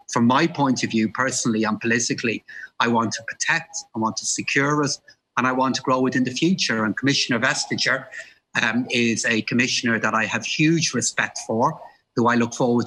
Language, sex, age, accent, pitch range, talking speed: English, male, 30-49, British, 120-145 Hz, 195 wpm